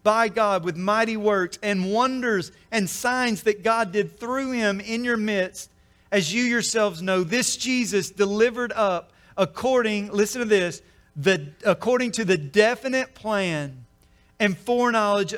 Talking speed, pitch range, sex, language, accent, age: 145 wpm, 165-200 Hz, male, English, American, 40-59